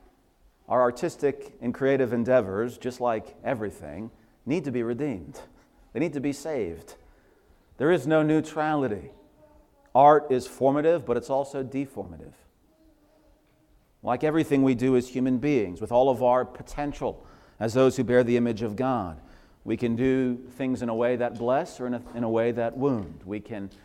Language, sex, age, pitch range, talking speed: English, male, 40-59, 115-140 Hz, 165 wpm